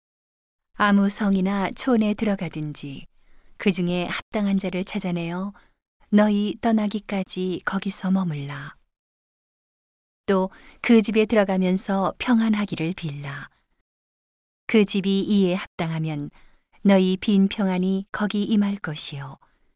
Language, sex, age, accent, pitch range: Korean, female, 40-59, native, 175-210 Hz